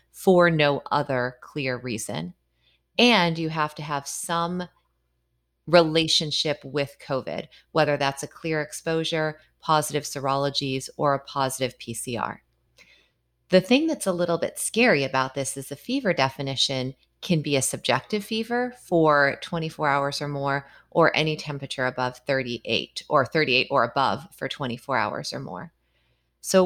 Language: English